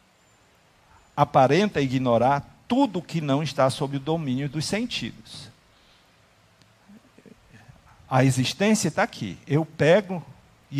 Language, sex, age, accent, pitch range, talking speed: Portuguese, male, 50-69, Brazilian, 130-180 Hz, 100 wpm